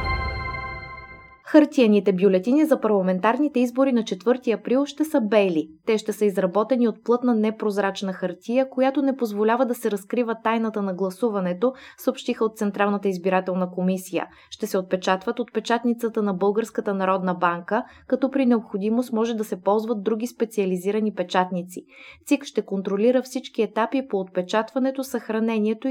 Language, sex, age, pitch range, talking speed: Bulgarian, female, 20-39, 185-240 Hz, 140 wpm